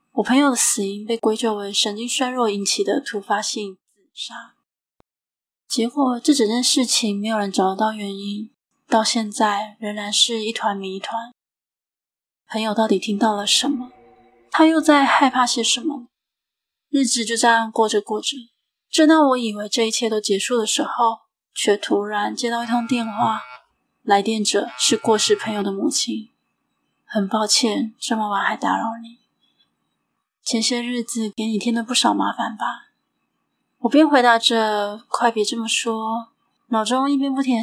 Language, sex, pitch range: Chinese, female, 215-255 Hz